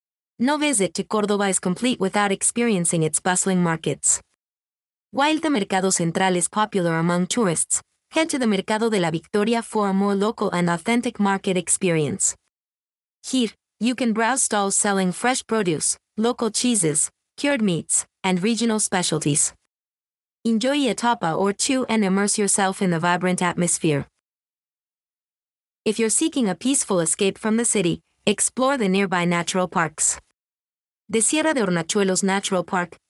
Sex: female